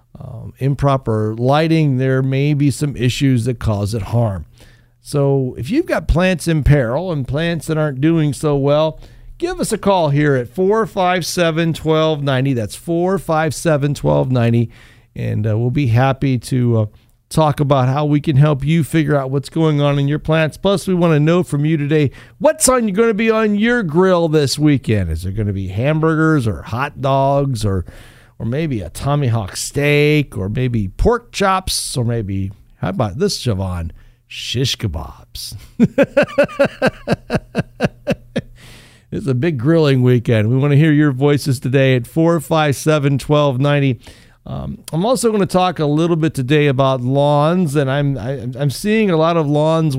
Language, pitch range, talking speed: English, 120-160 Hz, 165 wpm